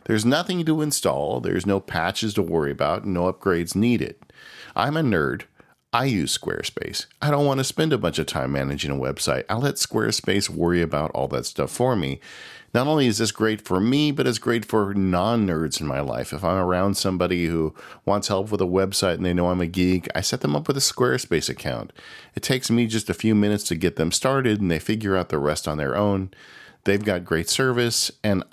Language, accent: English, American